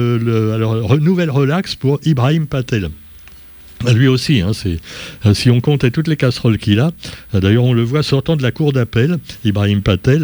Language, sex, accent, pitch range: French, male, French, 105-140 Hz